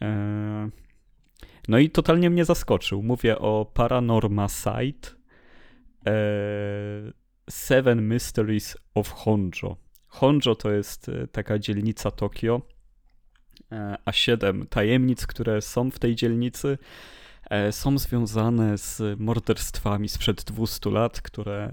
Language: Polish